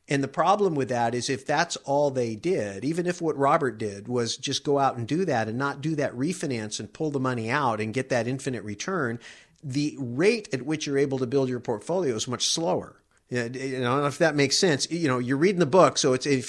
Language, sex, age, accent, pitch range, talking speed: English, male, 50-69, American, 125-160 Hz, 245 wpm